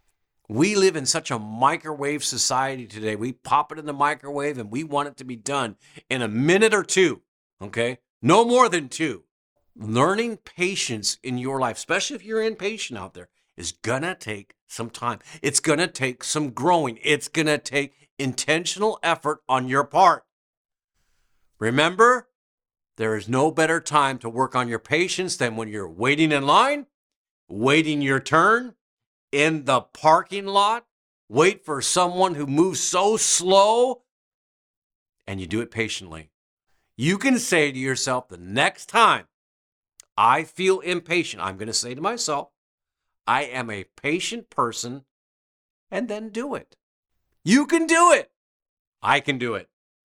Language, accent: English, American